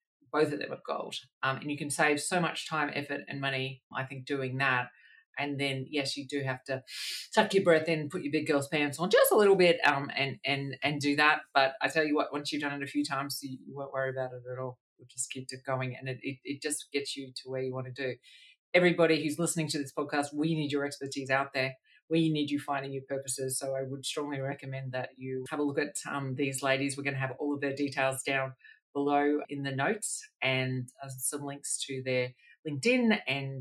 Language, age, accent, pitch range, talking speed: English, 30-49, Australian, 135-150 Hz, 245 wpm